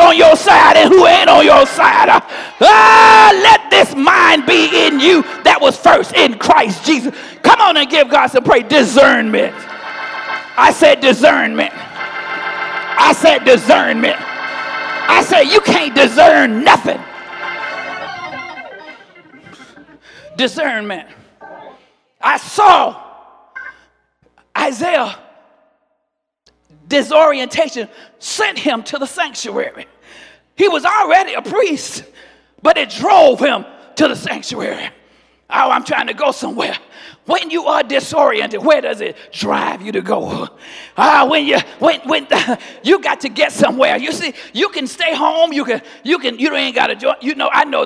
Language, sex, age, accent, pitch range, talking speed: English, male, 40-59, American, 280-345 Hz, 140 wpm